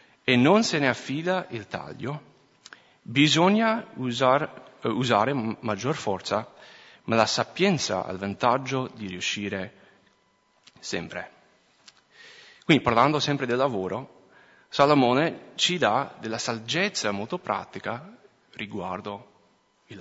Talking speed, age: 105 wpm, 30-49